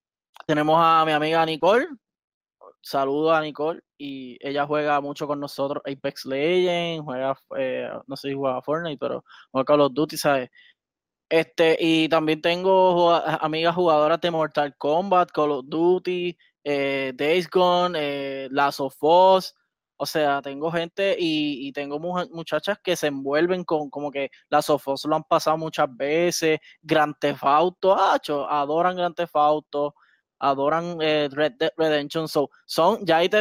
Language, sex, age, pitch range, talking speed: Spanish, male, 20-39, 150-180 Hz, 160 wpm